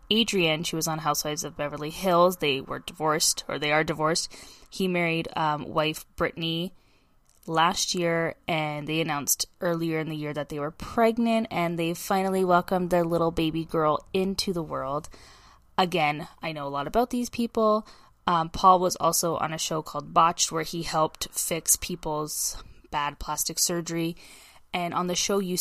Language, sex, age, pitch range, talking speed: English, female, 10-29, 155-190 Hz, 175 wpm